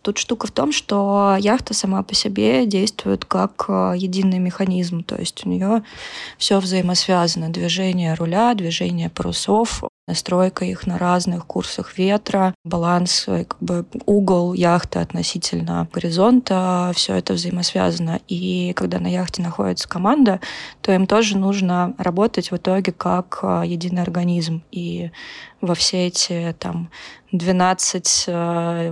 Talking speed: 125 wpm